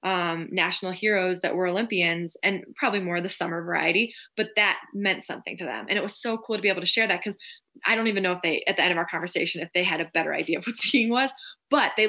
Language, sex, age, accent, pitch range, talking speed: English, female, 20-39, American, 175-215 Hz, 275 wpm